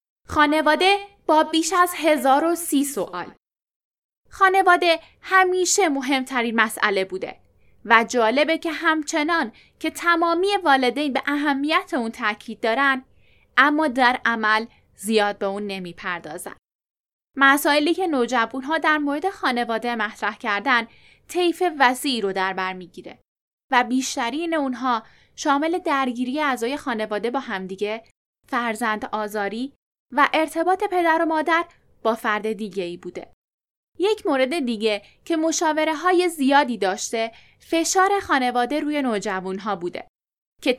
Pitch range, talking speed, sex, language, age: 230-325 Hz, 120 wpm, female, Persian, 10-29